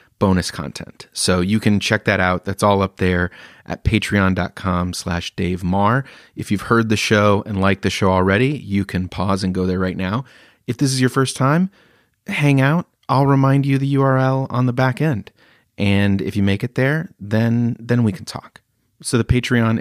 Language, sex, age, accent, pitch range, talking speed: English, male, 30-49, American, 95-125 Hz, 200 wpm